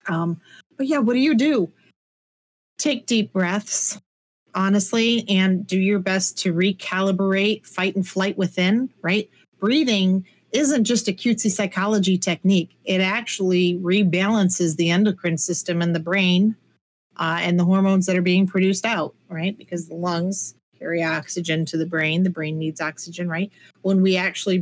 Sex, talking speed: female, 155 wpm